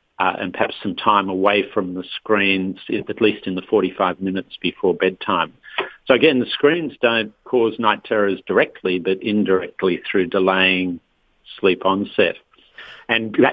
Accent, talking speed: Australian, 145 wpm